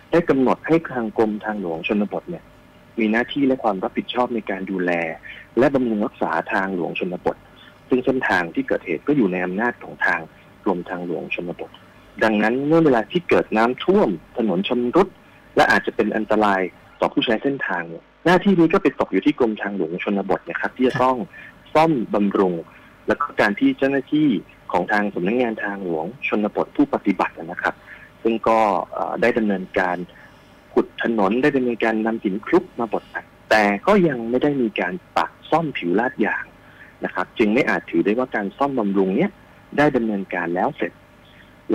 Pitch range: 100-135 Hz